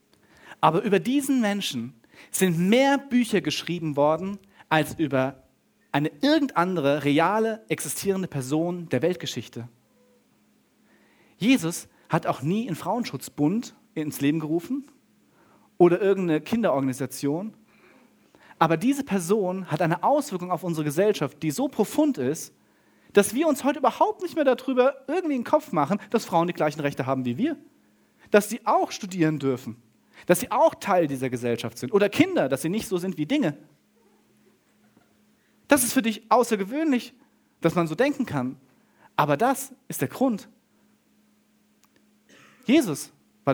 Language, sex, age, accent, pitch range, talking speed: German, male, 40-59, German, 145-235 Hz, 140 wpm